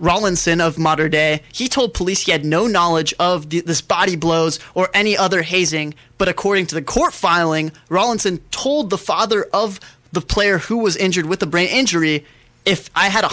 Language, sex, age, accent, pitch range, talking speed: English, male, 20-39, American, 160-195 Hz, 200 wpm